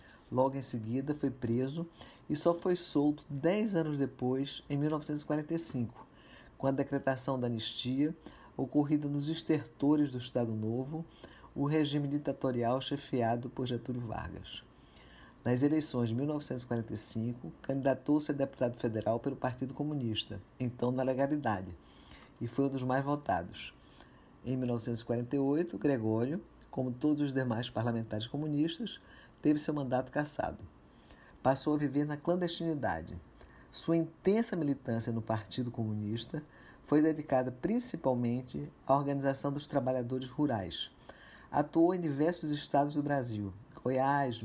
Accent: Brazilian